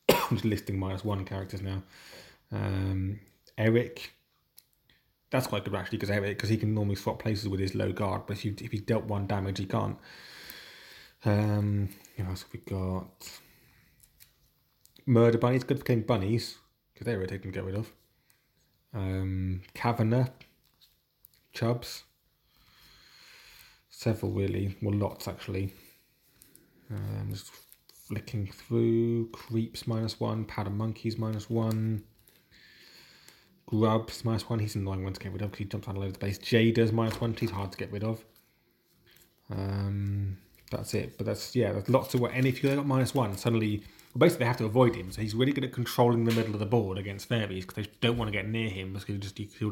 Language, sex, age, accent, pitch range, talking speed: English, male, 20-39, British, 100-115 Hz, 180 wpm